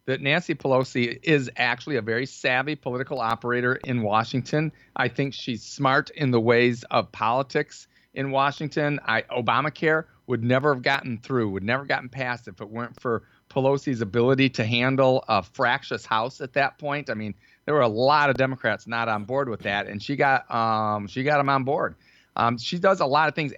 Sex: male